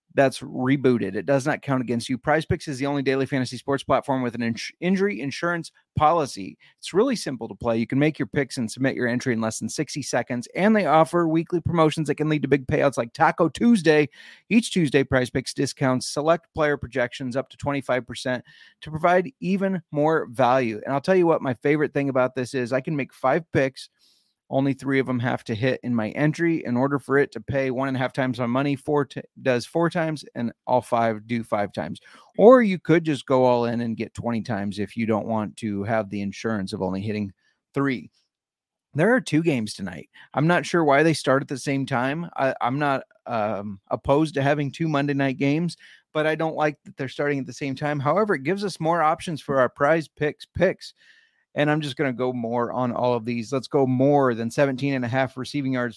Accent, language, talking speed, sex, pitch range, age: American, English, 225 wpm, male, 125-155 Hz, 30-49